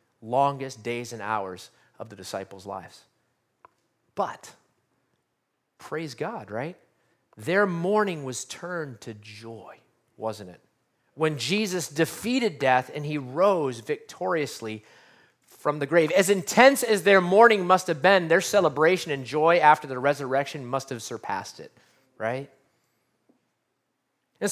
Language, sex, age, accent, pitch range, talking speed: English, male, 30-49, American, 130-195 Hz, 125 wpm